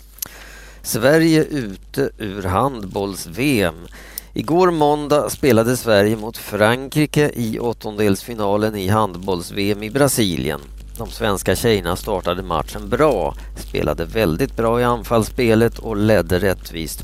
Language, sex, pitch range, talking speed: Swedish, male, 95-125 Hz, 105 wpm